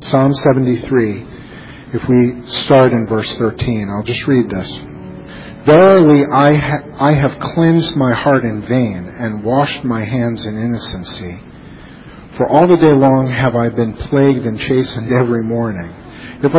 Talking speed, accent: 150 wpm, American